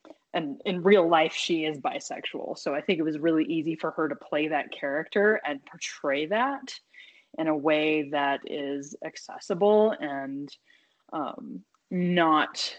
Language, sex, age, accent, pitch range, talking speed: English, female, 20-39, American, 150-195 Hz, 150 wpm